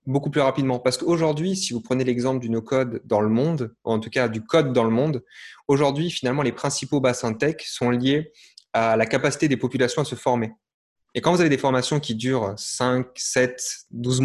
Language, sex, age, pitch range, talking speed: French, male, 20-39, 120-150 Hz, 215 wpm